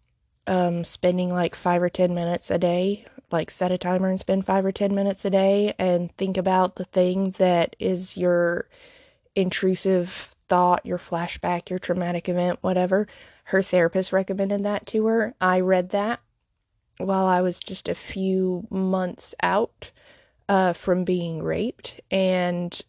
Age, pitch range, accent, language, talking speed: 20-39, 180-195 Hz, American, English, 155 wpm